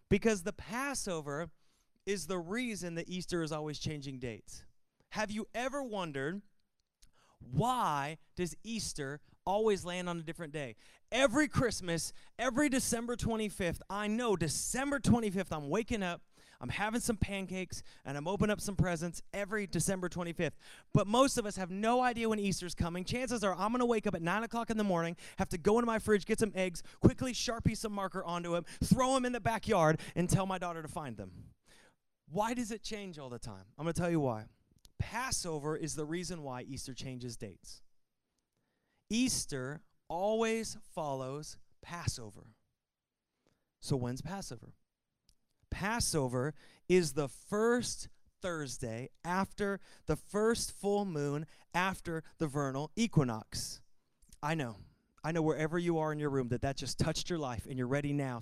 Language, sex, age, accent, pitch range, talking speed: English, male, 30-49, American, 145-210 Hz, 165 wpm